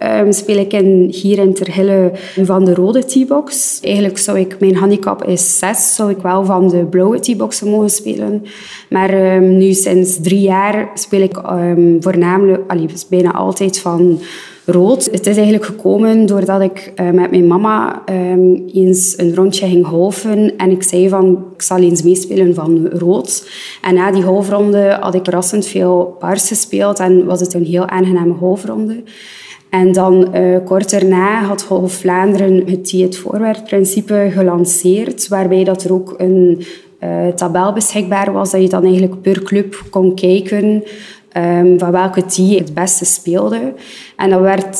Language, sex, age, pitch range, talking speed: Dutch, female, 20-39, 180-200 Hz, 170 wpm